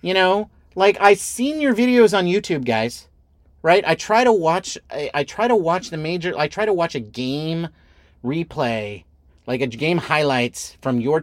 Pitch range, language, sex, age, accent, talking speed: 125-195 Hz, English, male, 30-49, American, 185 wpm